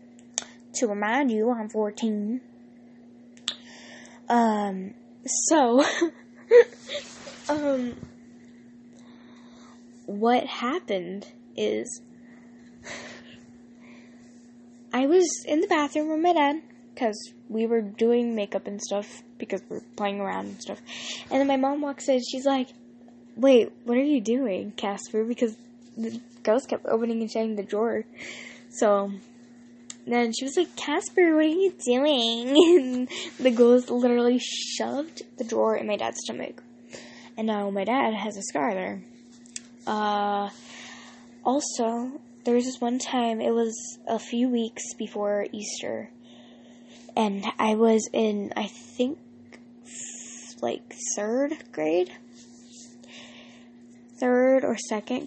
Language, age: English, 10-29